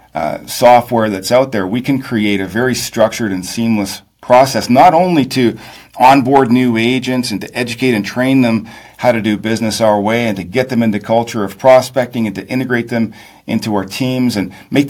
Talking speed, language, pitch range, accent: 195 wpm, English, 105-125 Hz, American